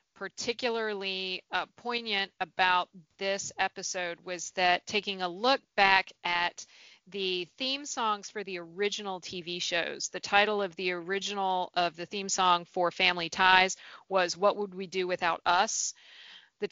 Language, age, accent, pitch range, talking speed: English, 40-59, American, 175-195 Hz, 145 wpm